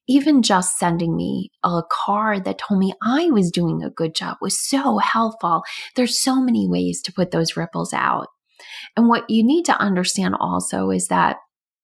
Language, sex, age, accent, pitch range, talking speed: English, female, 20-39, American, 165-215 Hz, 180 wpm